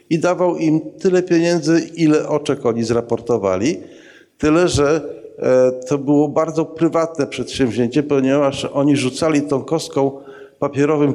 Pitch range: 130-165 Hz